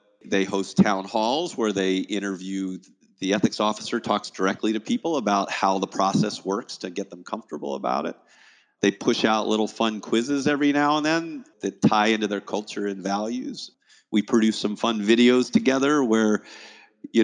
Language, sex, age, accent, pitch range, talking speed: English, male, 40-59, American, 100-130 Hz, 175 wpm